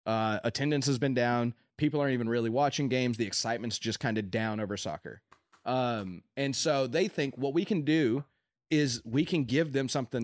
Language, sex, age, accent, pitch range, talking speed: English, male, 30-49, American, 115-145 Hz, 200 wpm